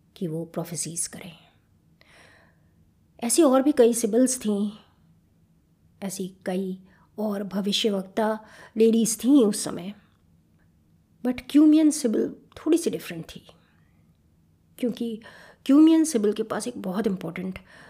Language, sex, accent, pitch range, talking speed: Hindi, female, native, 170-235 Hz, 110 wpm